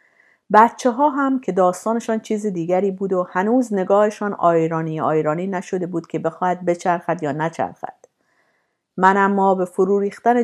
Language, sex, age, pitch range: Persian, female, 50-69, 175-205 Hz